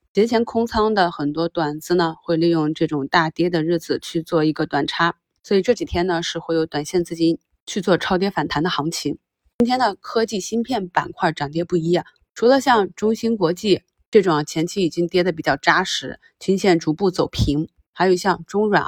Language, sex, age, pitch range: Chinese, female, 20-39, 165-195 Hz